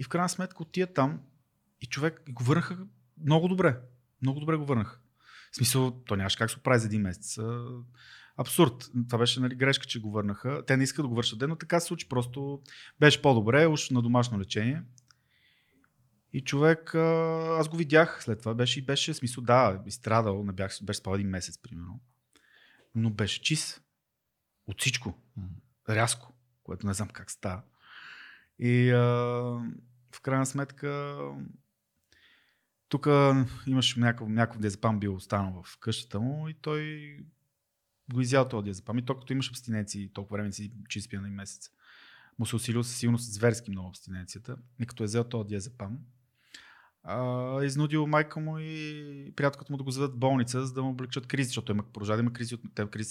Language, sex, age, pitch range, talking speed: Bulgarian, male, 30-49, 110-140 Hz, 165 wpm